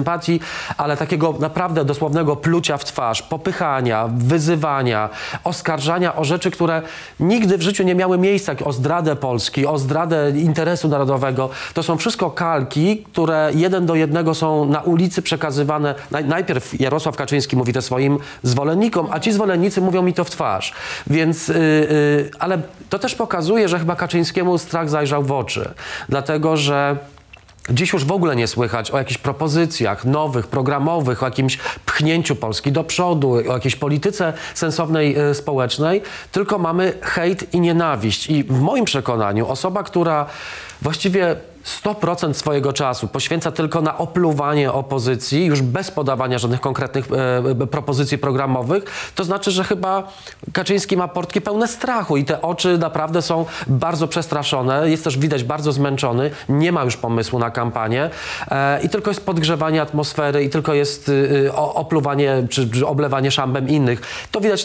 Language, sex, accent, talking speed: Polish, male, native, 150 wpm